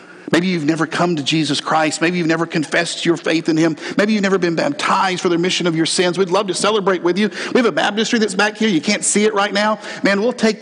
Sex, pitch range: male, 175-225 Hz